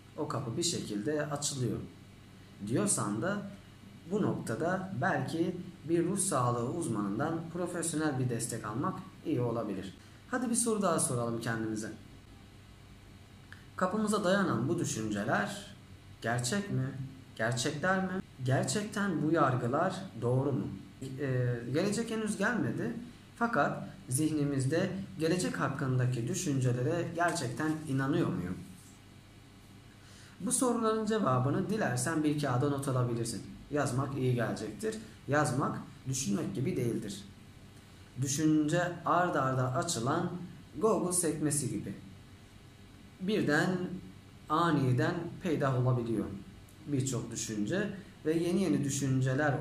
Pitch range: 110-165 Hz